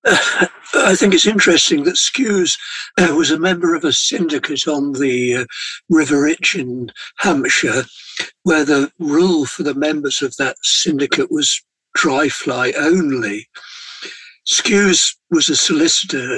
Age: 60-79